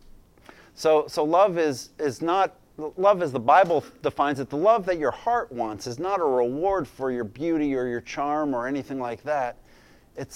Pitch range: 120-155 Hz